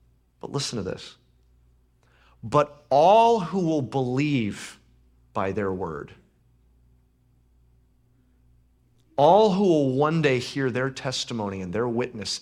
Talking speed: 110 wpm